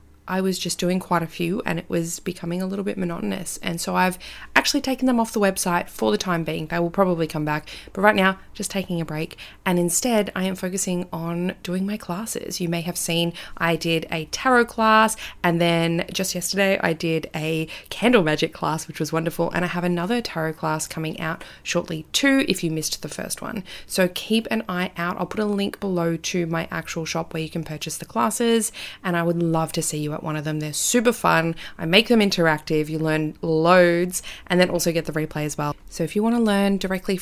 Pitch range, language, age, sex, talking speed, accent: 160-195 Hz, English, 20-39, female, 230 wpm, Australian